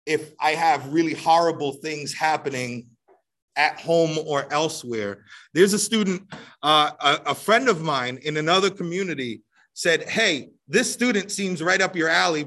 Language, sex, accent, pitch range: English, male, American, 150-200 Hz